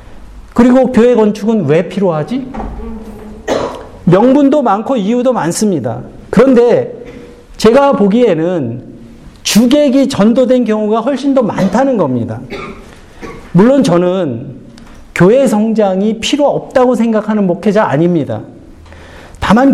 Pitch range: 185-260 Hz